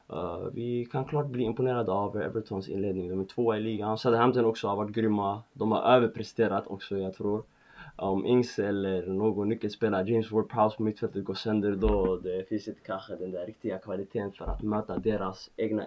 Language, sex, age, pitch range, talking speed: Swedish, male, 20-39, 105-120 Hz, 195 wpm